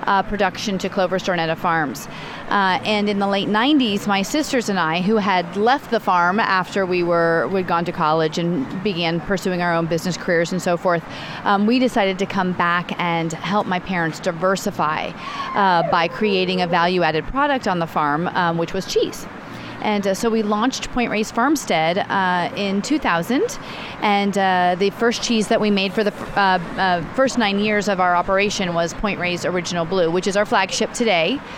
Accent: American